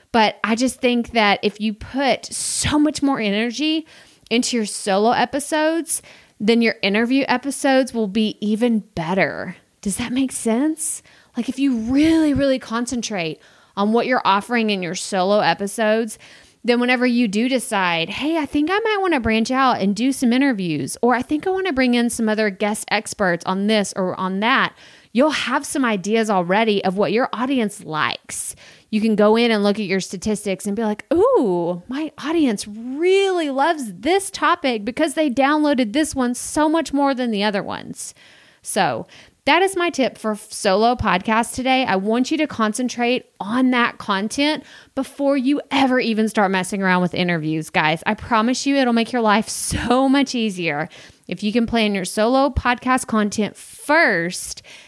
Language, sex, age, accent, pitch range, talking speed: English, female, 30-49, American, 205-270 Hz, 180 wpm